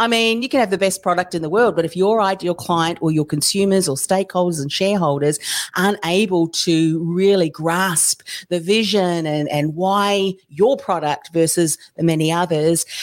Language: English